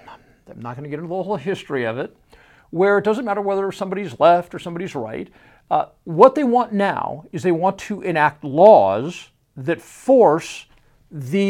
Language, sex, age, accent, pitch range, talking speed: English, male, 60-79, American, 150-220 Hz, 185 wpm